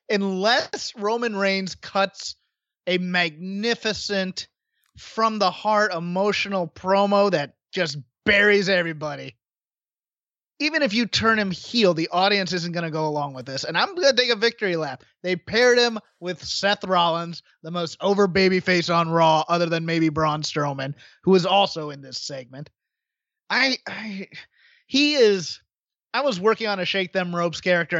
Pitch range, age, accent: 165-230 Hz, 30-49, American